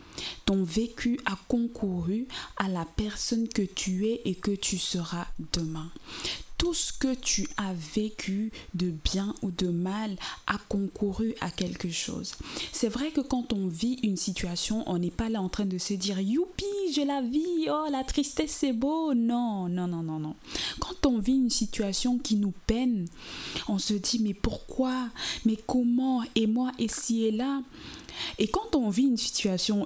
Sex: female